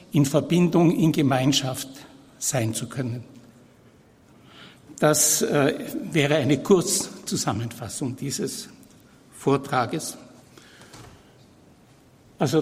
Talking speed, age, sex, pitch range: 70 wpm, 60-79, male, 140-185 Hz